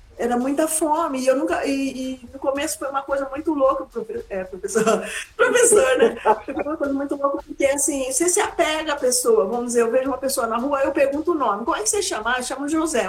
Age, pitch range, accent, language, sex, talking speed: 50-69, 250-320 Hz, Brazilian, Portuguese, female, 240 wpm